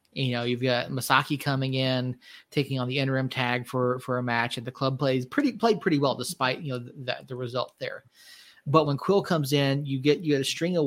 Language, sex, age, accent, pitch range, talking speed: English, male, 30-49, American, 130-165 Hz, 235 wpm